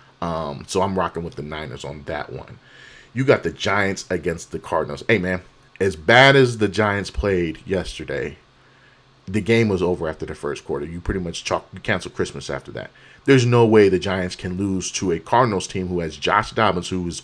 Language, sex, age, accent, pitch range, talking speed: English, male, 40-59, American, 90-125 Hz, 200 wpm